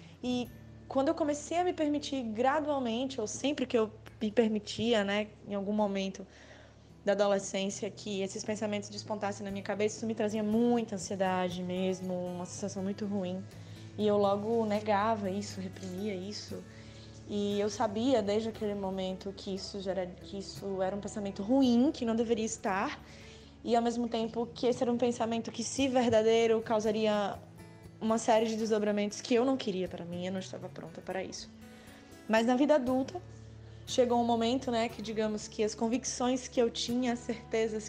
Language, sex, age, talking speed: Portuguese, female, 10-29, 175 wpm